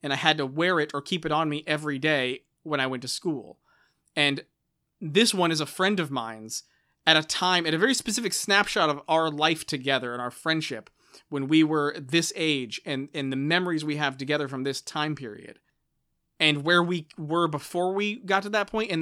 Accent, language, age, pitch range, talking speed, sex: American, English, 30-49, 140-165 Hz, 215 wpm, male